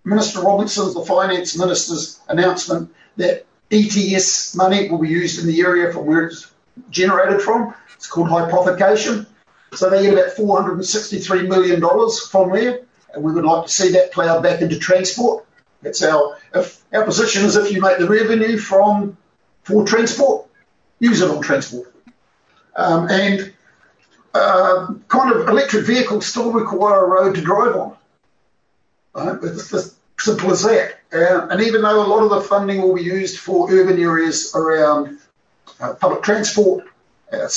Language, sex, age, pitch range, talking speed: English, male, 50-69, 170-210 Hz, 160 wpm